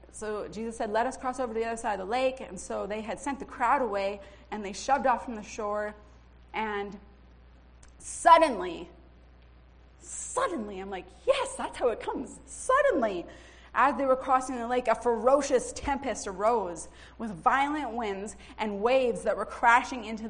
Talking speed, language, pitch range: 175 wpm, English, 190-260 Hz